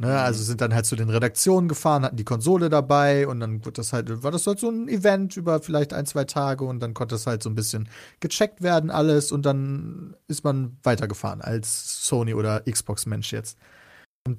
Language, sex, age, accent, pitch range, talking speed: German, male, 30-49, German, 115-150 Hz, 195 wpm